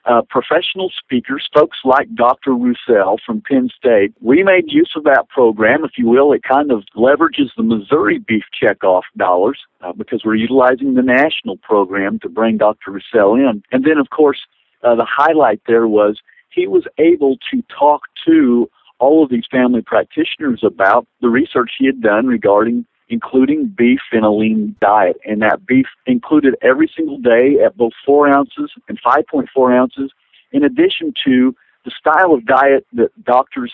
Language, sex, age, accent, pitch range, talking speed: English, male, 50-69, American, 115-155 Hz, 170 wpm